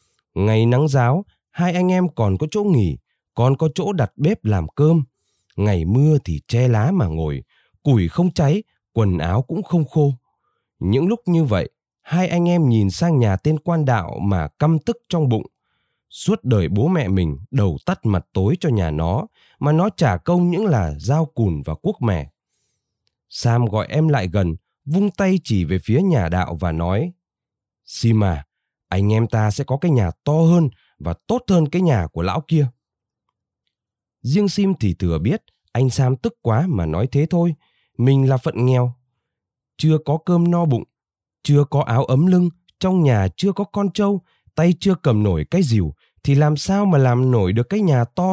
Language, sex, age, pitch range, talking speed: Vietnamese, male, 20-39, 100-165 Hz, 190 wpm